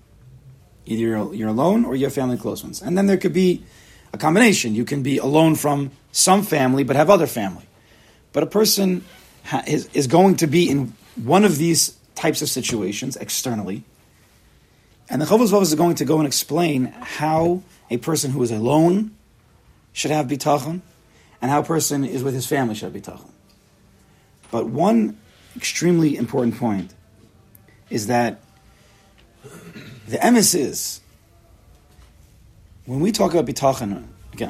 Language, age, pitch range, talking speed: English, 40-59, 105-160 Hz, 155 wpm